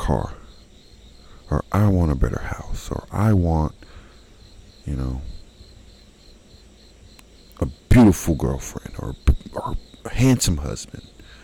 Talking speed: 105 wpm